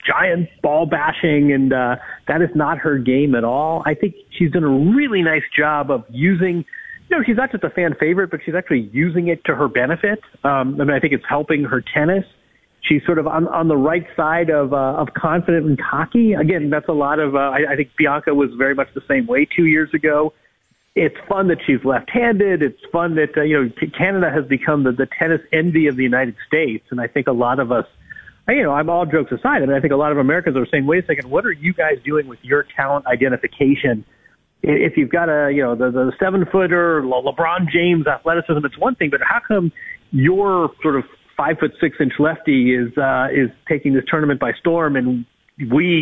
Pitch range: 135-170 Hz